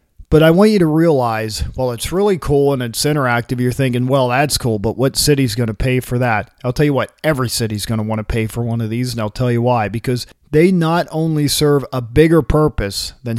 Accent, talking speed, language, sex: American, 245 wpm, English, male